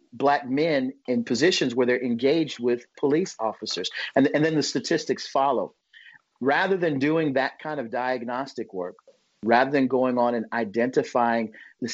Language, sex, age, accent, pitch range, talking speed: English, male, 40-59, American, 115-145 Hz, 155 wpm